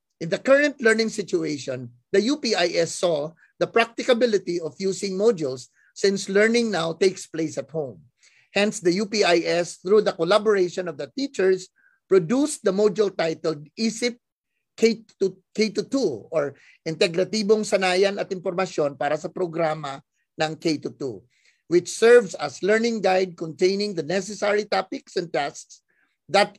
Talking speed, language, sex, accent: 130 wpm, Filipino, male, native